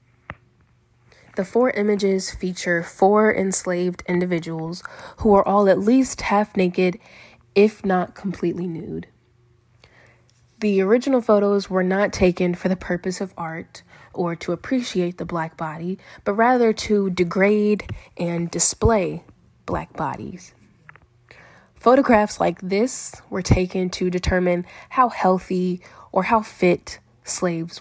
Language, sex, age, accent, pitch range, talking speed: English, female, 20-39, American, 165-200 Hz, 120 wpm